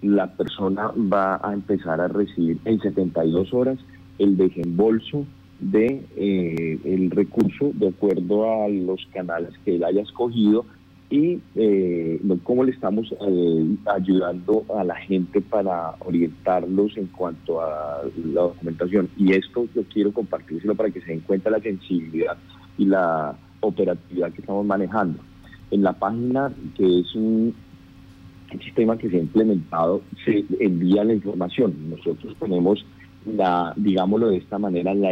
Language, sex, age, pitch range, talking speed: Spanish, male, 40-59, 90-110 Hz, 145 wpm